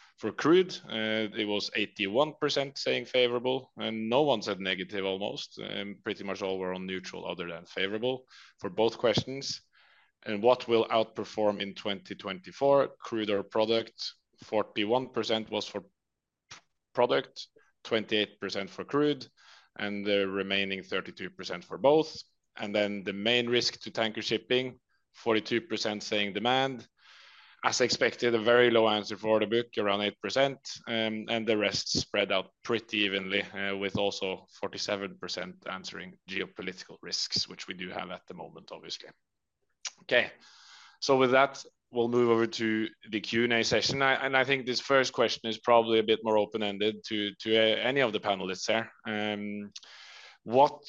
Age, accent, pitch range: 30-49, Norwegian, 105-120 Hz